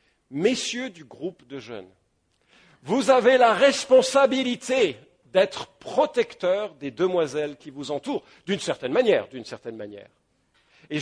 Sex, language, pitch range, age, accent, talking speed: male, English, 140-230 Hz, 50-69, French, 130 wpm